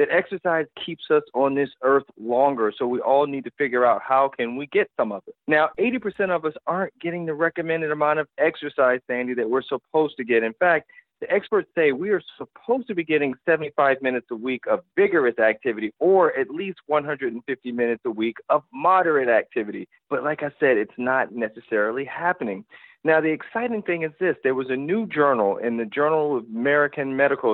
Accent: American